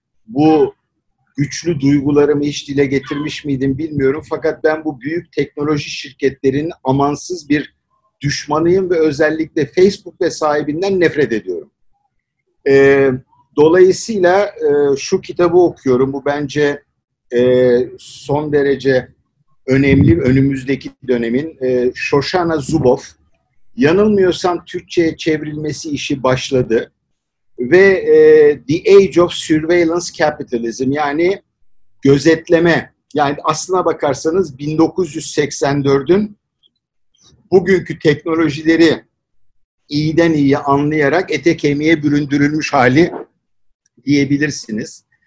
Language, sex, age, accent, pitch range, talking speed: Turkish, male, 50-69, native, 140-170 Hz, 90 wpm